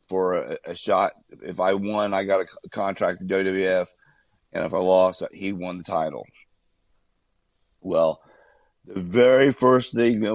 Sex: male